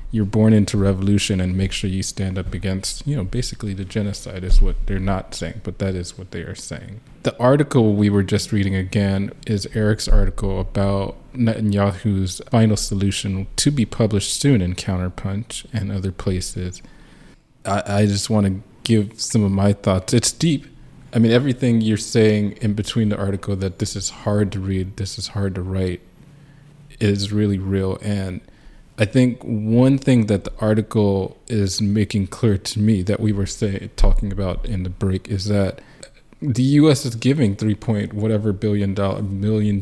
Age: 20-39